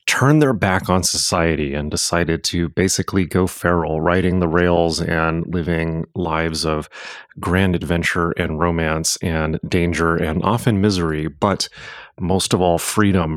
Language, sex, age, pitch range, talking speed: English, male, 30-49, 85-100 Hz, 145 wpm